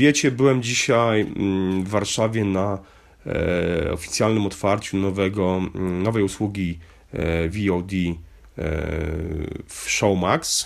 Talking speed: 80 wpm